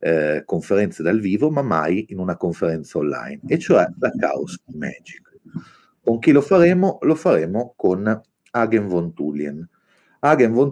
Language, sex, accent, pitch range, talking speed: Italian, male, native, 80-130 Hz, 150 wpm